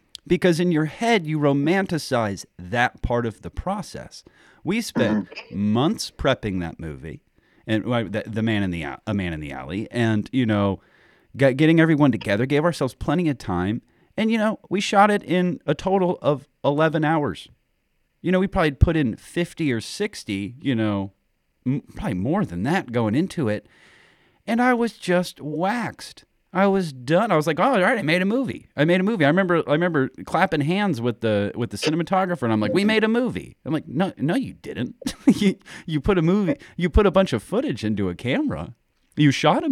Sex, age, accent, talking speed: male, 40-59, American, 200 wpm